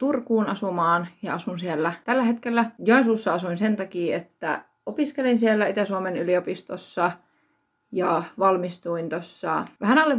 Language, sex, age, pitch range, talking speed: Finnish, female, 20-39, 175-220 Hz, 125 wpm